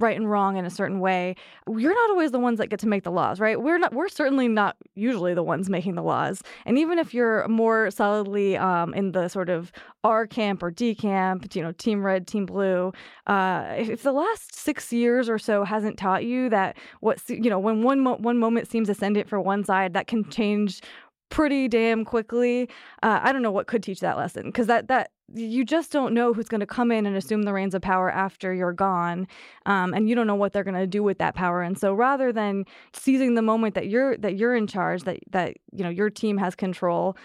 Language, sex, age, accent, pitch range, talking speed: English, female, 20-39, American, 190-235 Hz, 235 wpm